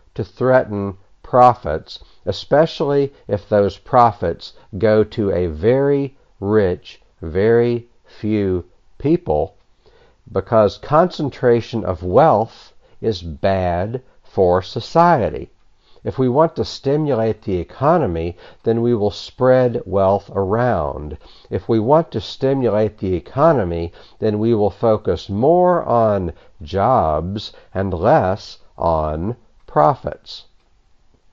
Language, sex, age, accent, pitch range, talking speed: English, male, 60-79, American, 95-125 Hz, 105 wpm